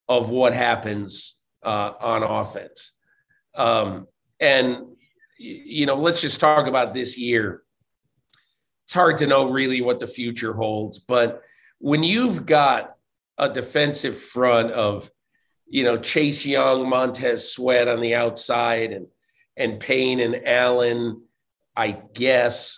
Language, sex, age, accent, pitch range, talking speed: English, male, 40-59, American, 115-140 Hz, 130 wpm